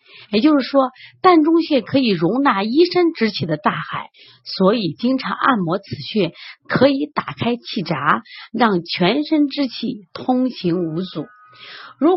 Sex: female